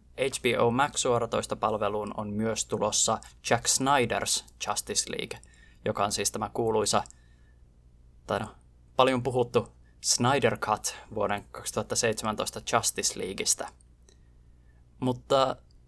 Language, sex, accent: Finnish, male, native